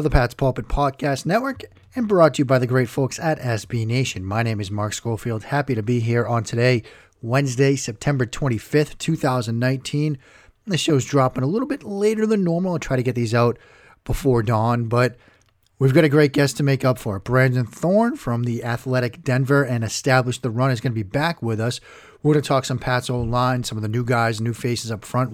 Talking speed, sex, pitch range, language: 215 wpm, male, 110-140 Hz, English